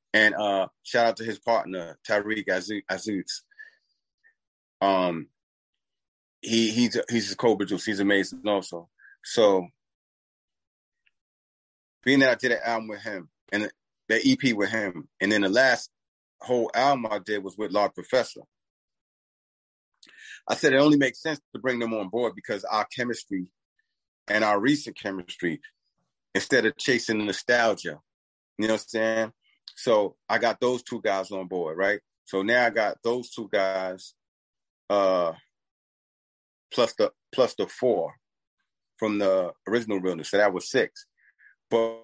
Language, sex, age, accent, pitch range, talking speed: English, male, 30-49, American, 100-130 Hz, 145 wpm